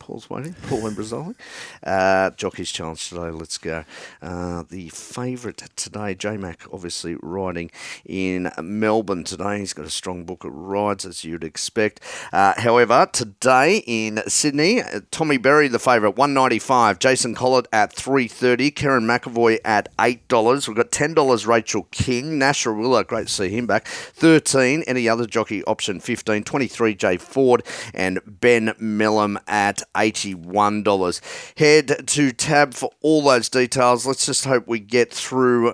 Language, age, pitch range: English, 40-59, 100-125 Hz